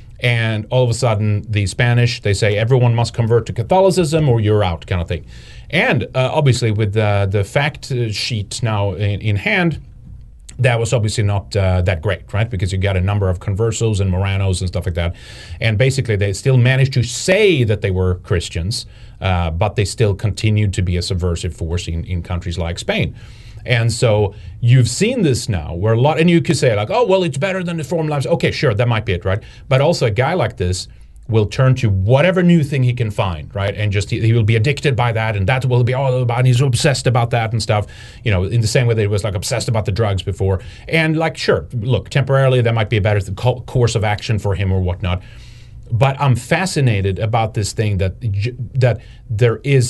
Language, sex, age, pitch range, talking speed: English, male, 30-49, 100-125 Hz, 225 wpm